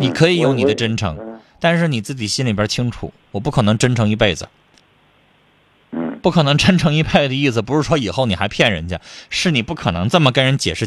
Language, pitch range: Chinese, 100-145 Hz